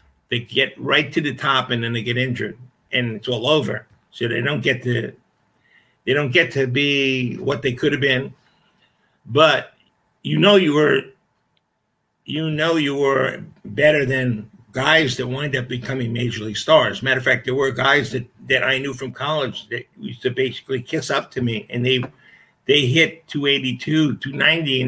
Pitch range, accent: 125-155 Hz, American